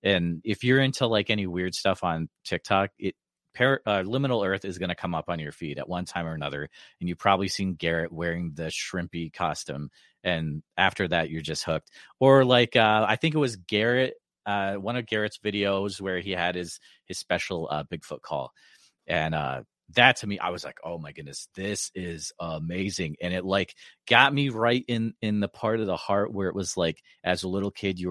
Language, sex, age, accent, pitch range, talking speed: English, male, 30-49, American, 90-115 Hz, 215 wpm